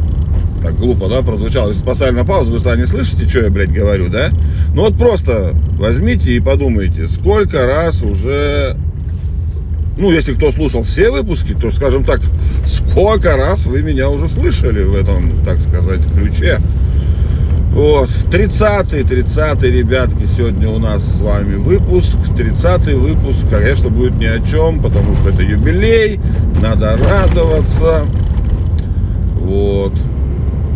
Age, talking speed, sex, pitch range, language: 40-59, 135 wpm, male, 80-95 Hz, Russian